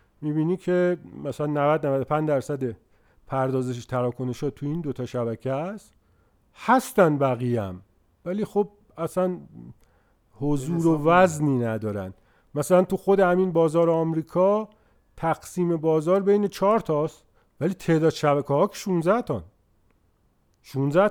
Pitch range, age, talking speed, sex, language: 130-195 Hz, 50-69, 120 wpm, male, Persian